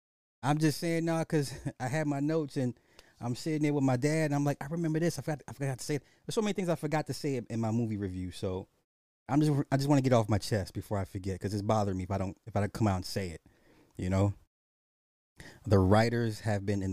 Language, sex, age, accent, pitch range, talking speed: English, male, 30-49, American, 100-145 Hz, 275 wpm